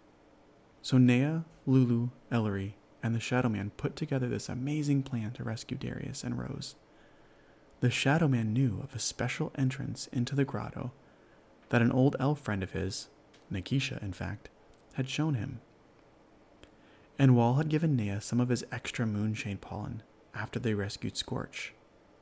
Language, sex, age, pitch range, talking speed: English, male, 30-49, 110-140 Hz, 155 wpm